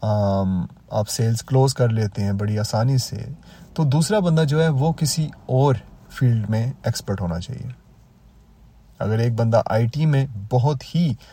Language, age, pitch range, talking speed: Urdu, 30-49, 110-145 Hz, 160 wpm